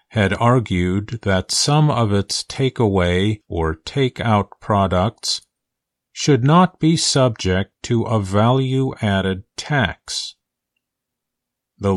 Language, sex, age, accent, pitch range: Chinese, male, 50-69, American, 100-130 Hz